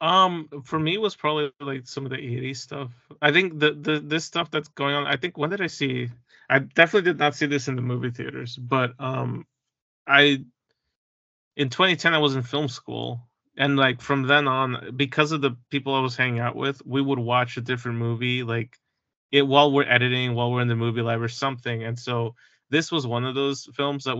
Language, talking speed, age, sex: English, 220 wpm, 30-49, male